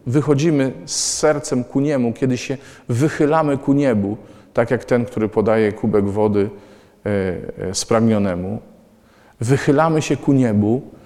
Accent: native